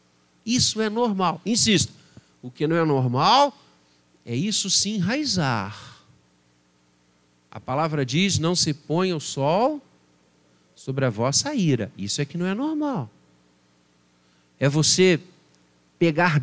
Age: 50-69